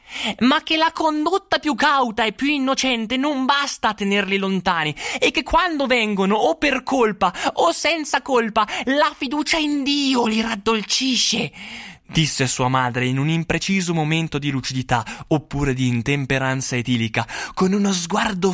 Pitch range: 125-205 Hz